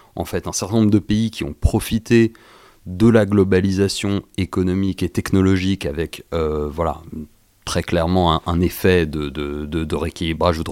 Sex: male